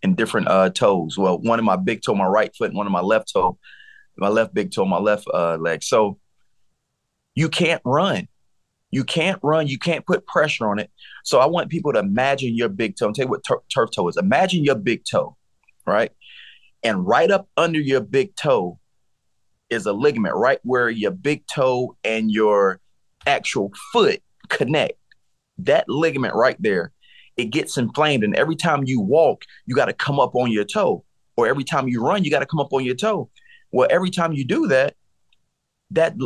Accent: American